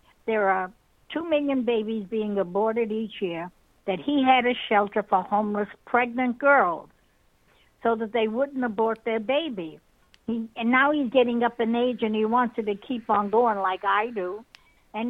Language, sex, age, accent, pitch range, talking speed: English, female, 60-79, American, 210-255 Hz, 175 wpm